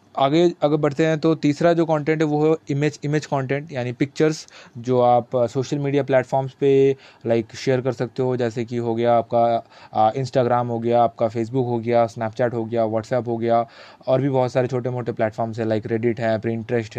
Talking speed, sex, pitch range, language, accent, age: 200 wpm, male, 120-145 Hz, Hindi, native, 20-39